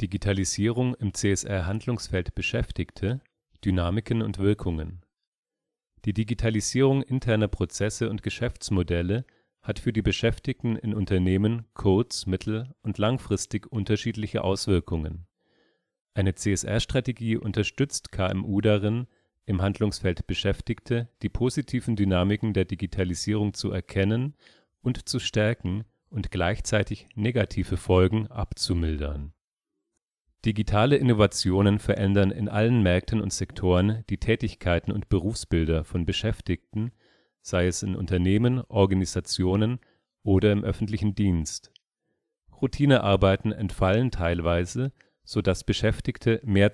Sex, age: male, 40-59